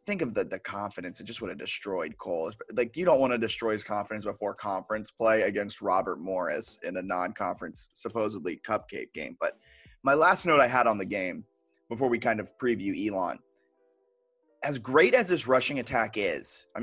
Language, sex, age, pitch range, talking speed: English, male, 20-39, 110-140 Hz, 195 wpm